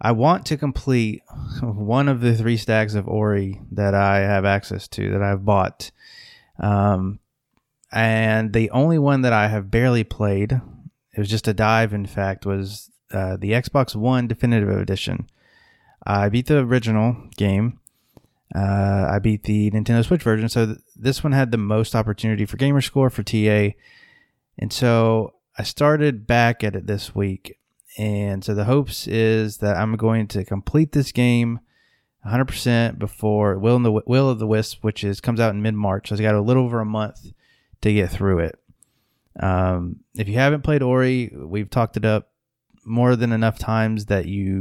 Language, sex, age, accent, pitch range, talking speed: English, male, 20-39, American, 105-120 Hz, 180 wpm